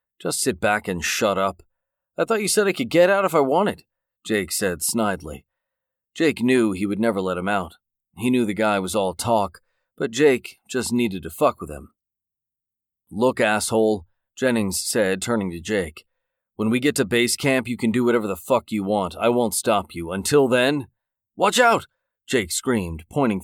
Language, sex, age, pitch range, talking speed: English, male, 40-59, 100-125 Hz, 190 wpm